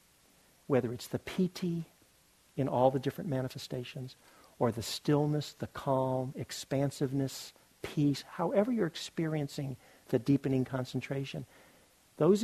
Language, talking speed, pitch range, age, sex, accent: English, 110 wpm, 130-160 Hz, 50-69, male, American